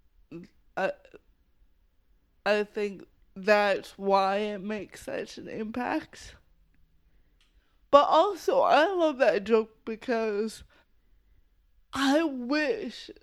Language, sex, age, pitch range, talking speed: English, female, 20-39, 205-255 Hz, 85 wpm